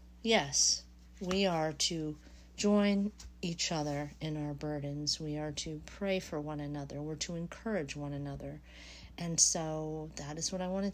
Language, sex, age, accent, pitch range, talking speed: English, female, 40-59, American, 145-185 Hz, 160 wpm